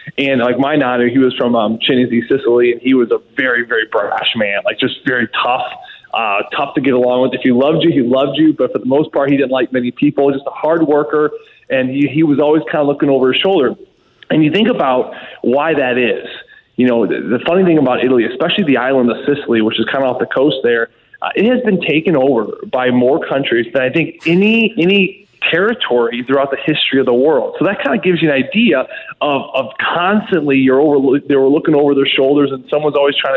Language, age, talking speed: English, 20-39, 235 wpm